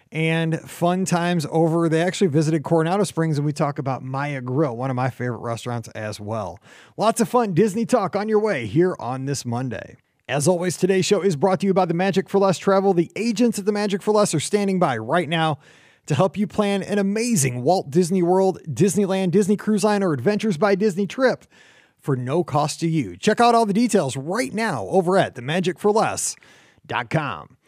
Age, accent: 30-49, American